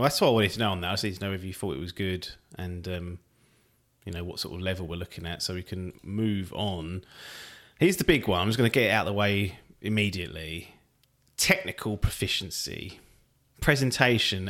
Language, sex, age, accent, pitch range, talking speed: English, male, 30-49, British, 95-135 Hz, 215 wpm